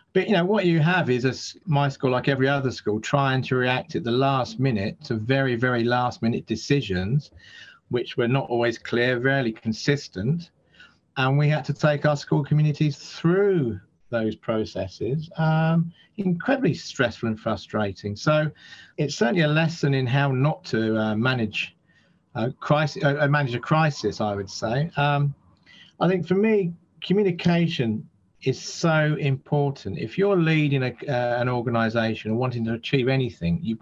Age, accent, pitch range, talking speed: 40-59, British, 120-150 Hz, 165 wpm